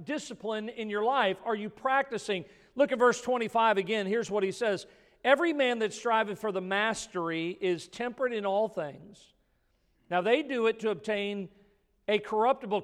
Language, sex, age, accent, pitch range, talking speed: English, male, 50-69, American, 200-240 Hz, 175 wpm